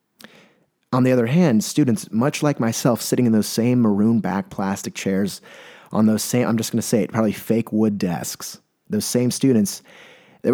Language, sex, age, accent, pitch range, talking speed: English, male, 30-49, American, 110-140 Hz, 180 wpm